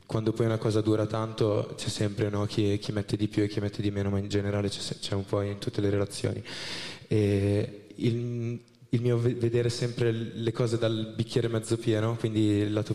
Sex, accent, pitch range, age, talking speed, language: male, native, 105-120 Hz, 20-39, 215 wpm, Italian